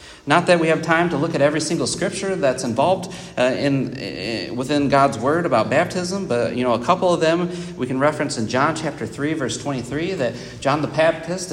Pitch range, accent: 120-170 Hz, American